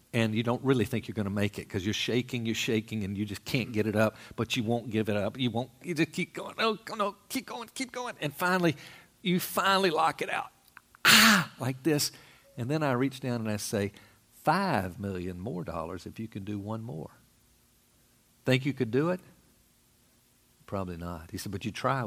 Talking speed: 220 wpm